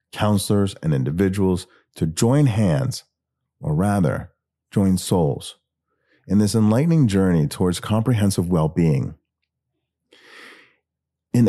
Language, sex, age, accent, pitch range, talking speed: English, male, 40-59, American, 85-115 Hz, 100 wpm